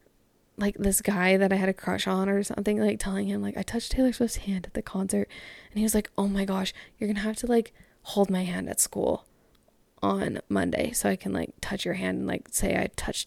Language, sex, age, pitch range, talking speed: English, female, 10-29, 195-260 Hz, 245 wpm